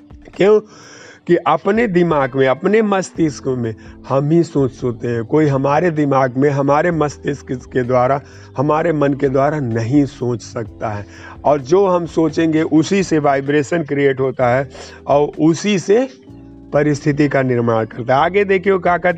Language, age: Hindi, 50-69